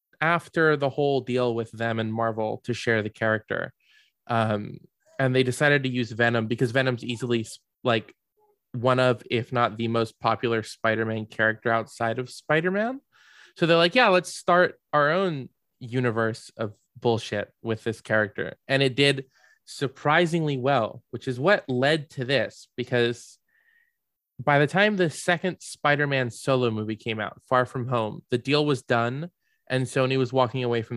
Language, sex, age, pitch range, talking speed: English, male, 20-39, 115-155 Hz, 165 wpm